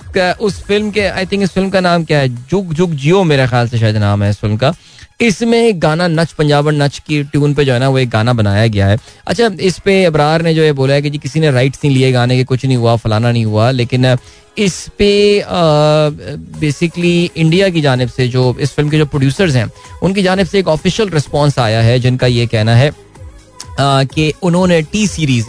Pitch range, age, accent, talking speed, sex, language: 130-175 Hz, 20-39, native, 225 wpm, male, Hindi